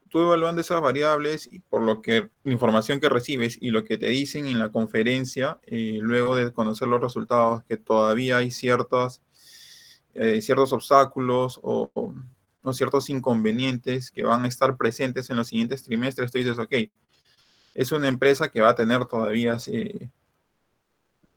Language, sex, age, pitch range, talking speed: Spanish, male, 20-39, 115-145 Hz, 165 wpm